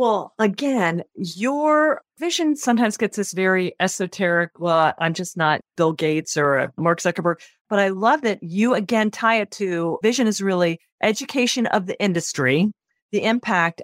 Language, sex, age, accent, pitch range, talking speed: English, female, 40-59, American, 170-215 Hz, 155 wpm